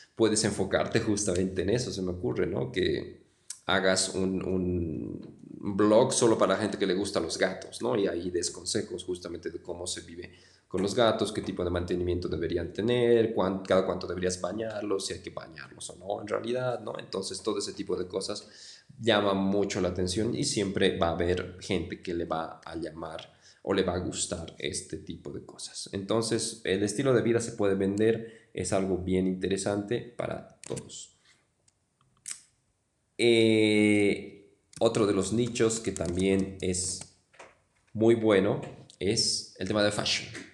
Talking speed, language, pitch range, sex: 170 wpm, Spanish, 95-115 Hz, male